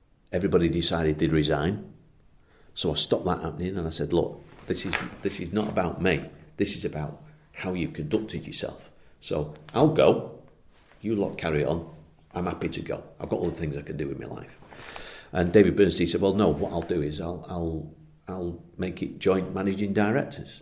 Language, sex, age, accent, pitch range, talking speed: English, male, 40-59, British, 75-90 Hz, 195 wpm